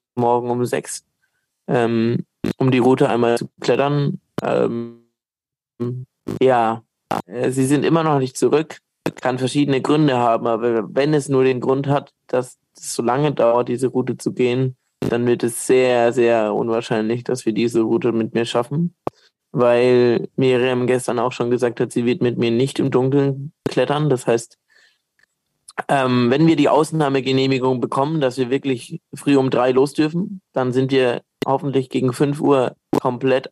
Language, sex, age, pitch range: German, male, 20-39, 120-140 Hz